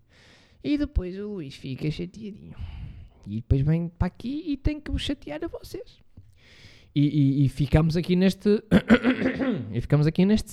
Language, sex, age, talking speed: Portuguese, male, 20-39, 155 wpm